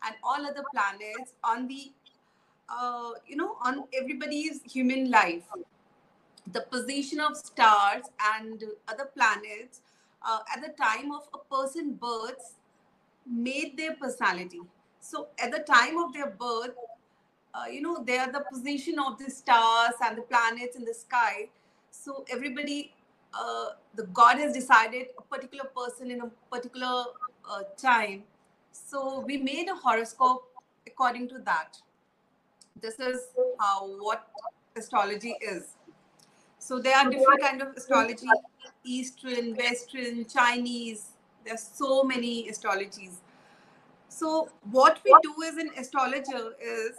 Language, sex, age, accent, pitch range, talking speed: English, female, 30-49, Indian, 230-280 Hz, 135 wpm